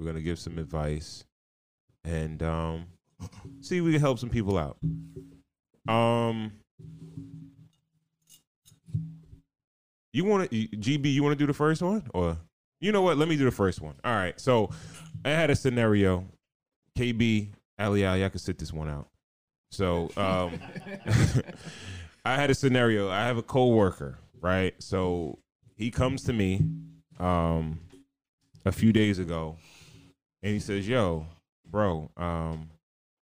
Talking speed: 145 wpm